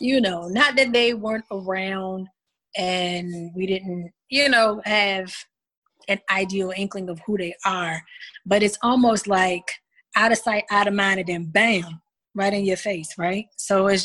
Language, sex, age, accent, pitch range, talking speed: English, female, 20-39, American, 185-215 Hz, 170 wpm